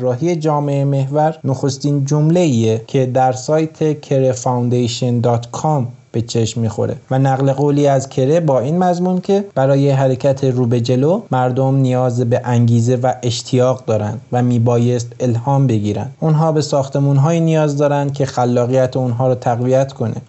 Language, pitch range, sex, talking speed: Persian, 125-150 Hz, male, 135 wpm